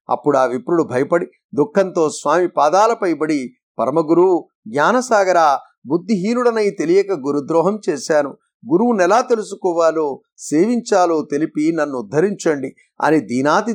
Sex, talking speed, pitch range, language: male, 100 wpm, 150-195 Hz, Telugu